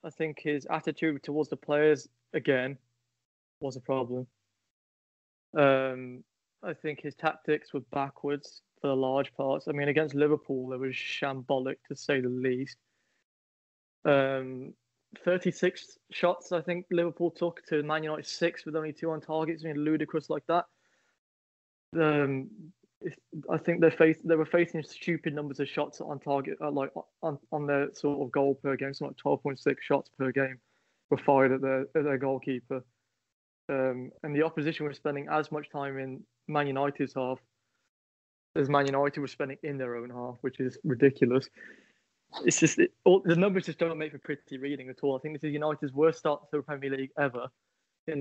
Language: English